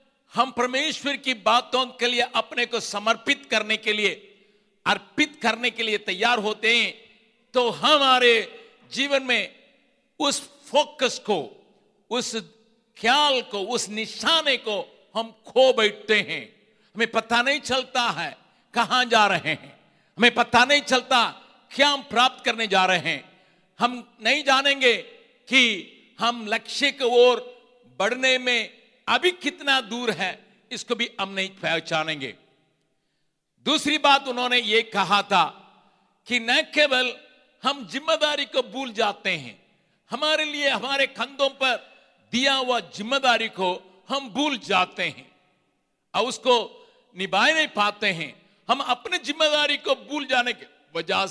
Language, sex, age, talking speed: Hindi, male, 60-79, 135 wpm